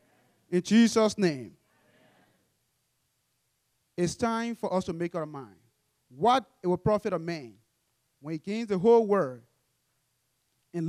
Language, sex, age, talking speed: English, male, 30-49, 130 wpm